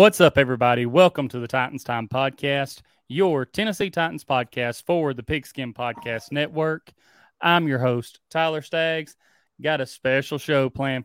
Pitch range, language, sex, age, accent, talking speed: 125-155 Hz, English, male, 30-49, American, 150 wpm